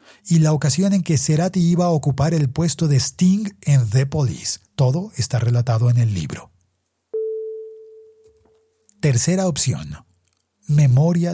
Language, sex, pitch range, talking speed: Spanish, male, 120-170 Hz, 130 wpm